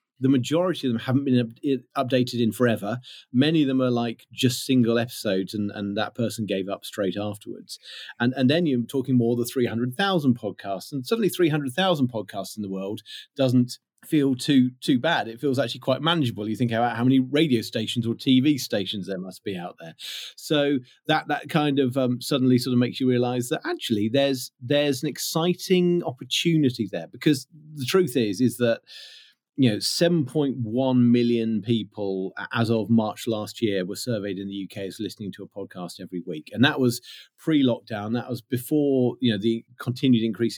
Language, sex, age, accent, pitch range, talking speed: English, male, 40-59, British, 110-135 Hz, 185 wpm